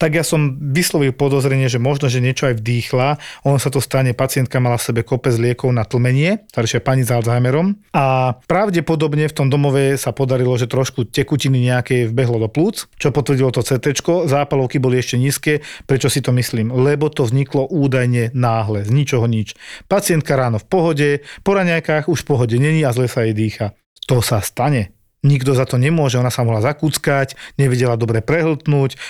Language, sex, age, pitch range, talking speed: Slovak, male, 40-59, 120-145 Hz, 185 wpm